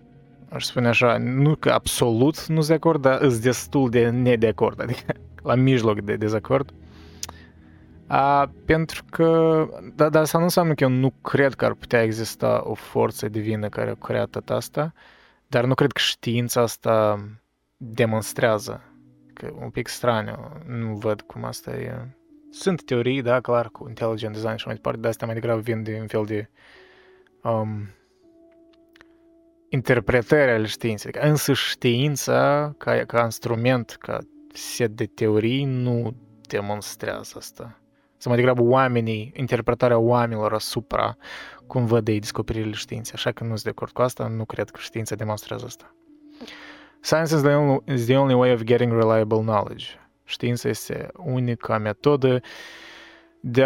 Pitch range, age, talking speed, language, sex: 110-140 Hz, 20-39, 145 wpm, Romanian, male